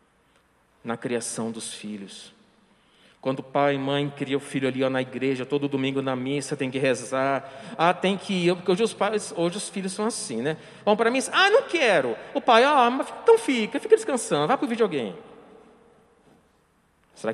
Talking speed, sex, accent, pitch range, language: 200 wpm, male, Brazilian, 140-225 Hz, Portuguese